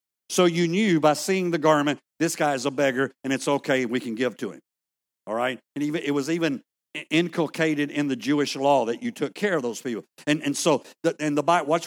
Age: 60-79